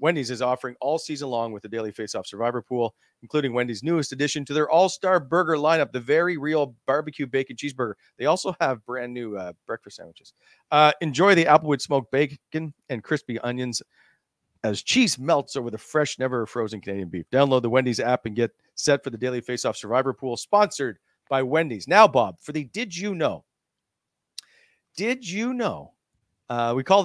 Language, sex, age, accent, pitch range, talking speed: English, male, 40-59, American, 115-155 Hz, 190 wpm